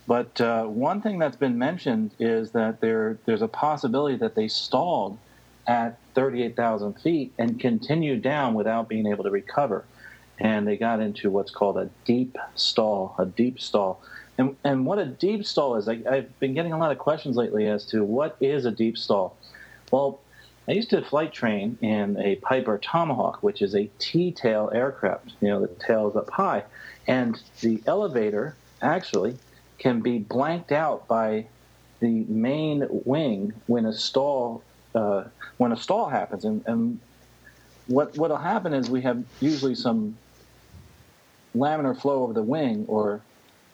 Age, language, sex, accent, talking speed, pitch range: 40-59, English, male, American, 165 wpm, 110-140 Hz